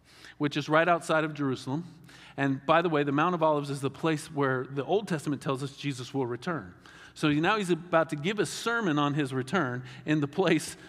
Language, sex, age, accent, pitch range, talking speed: English, male, 40-59, American, 140-175 Hz, 220 wpm